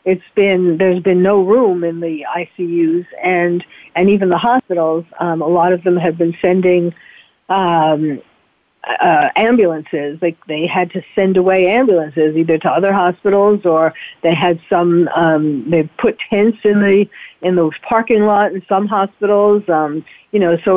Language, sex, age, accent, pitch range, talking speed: English, female, 50-69, American, 175-225 Hz, 165 wpm